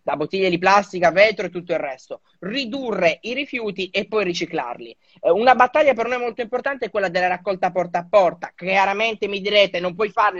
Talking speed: 195 wpm